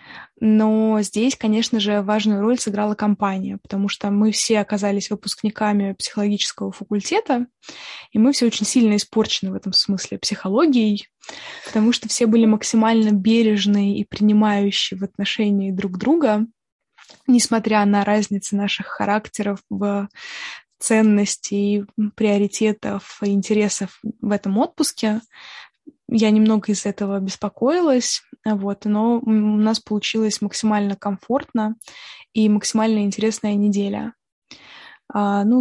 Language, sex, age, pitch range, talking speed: Russian, female, 20-39, 205-230 Hz, 110 wpm